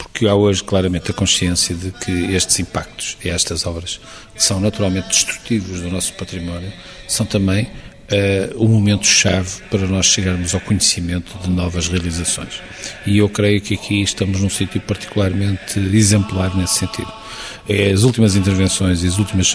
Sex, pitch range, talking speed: male, 95-115 Hz, 155 wpm